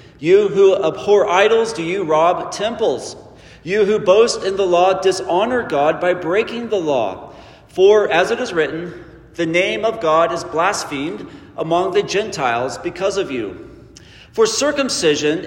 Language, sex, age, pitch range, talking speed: English, male, 40-59, 160-260 Hz, 150 wpm